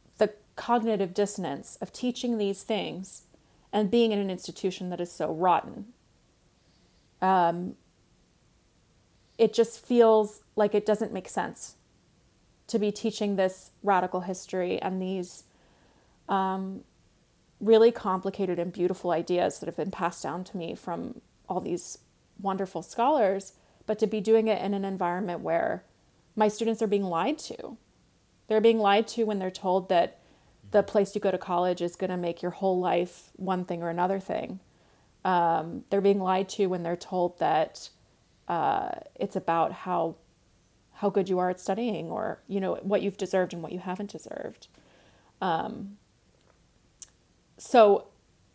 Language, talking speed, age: English, 150 wpm, 30-49